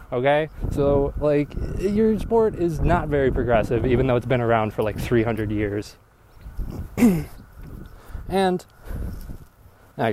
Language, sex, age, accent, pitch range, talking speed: English, male, 20-39, American, 115-150 Hz, 120 wpm